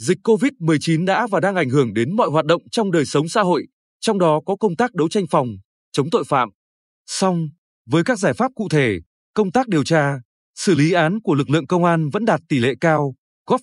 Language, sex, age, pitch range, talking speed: Vietnamese, male, 20-39, 150-200 Hz, 230 wpm